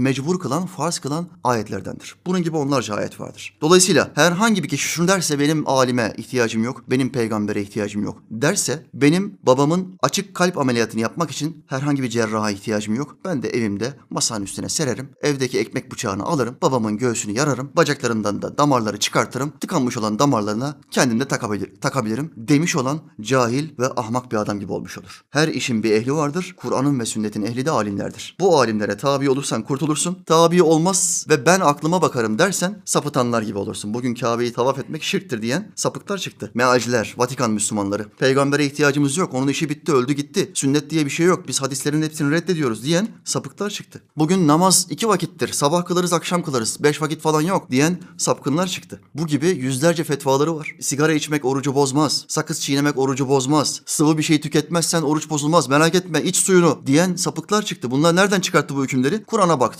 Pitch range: 125-165 Hz